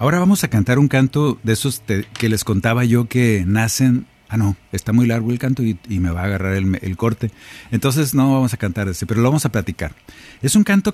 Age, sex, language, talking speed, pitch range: 50-69, male, Spanish, 245 wpm, 95-130 Hz